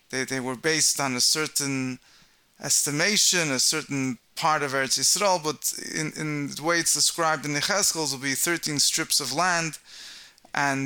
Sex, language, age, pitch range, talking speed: male, English, 20-39, 140-170 Hz, 165 wpm